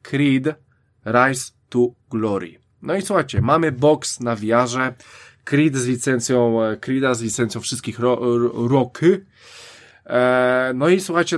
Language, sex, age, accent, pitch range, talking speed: Polish, male, 20-39, native, 110-145 Hz, 135 wpm